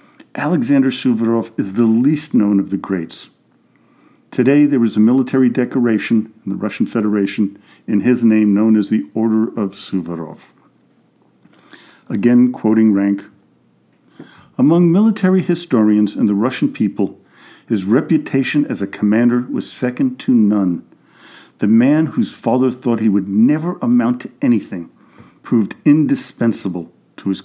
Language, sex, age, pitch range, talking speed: English, male, 50-69, 100-140 Hz, 135 wpm